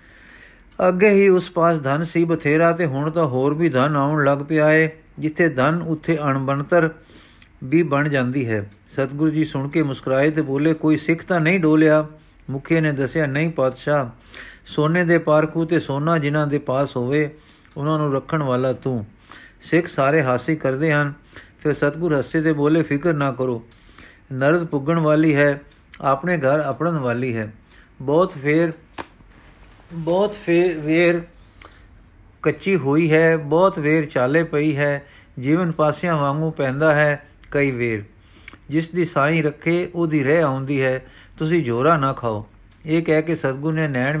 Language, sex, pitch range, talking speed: Punjabi, male, 135-165 Hz, 155 wpm